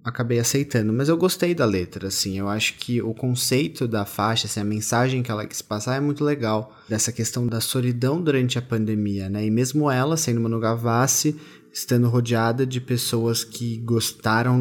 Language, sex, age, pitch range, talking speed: Portuguese, male, 20-39, 110-130 Hz, 185 wpm